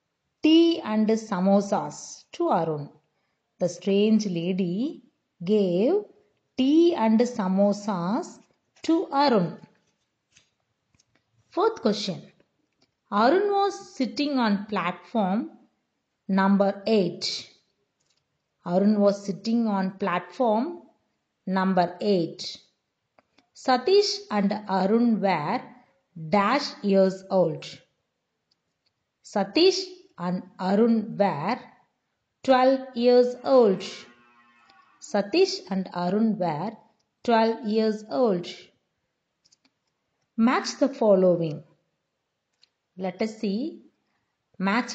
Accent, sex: native, female